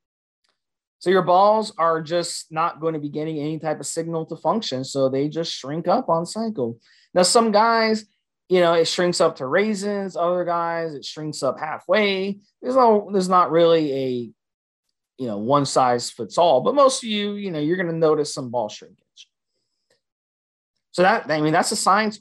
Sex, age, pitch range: male, 20-39, 145-195 Hz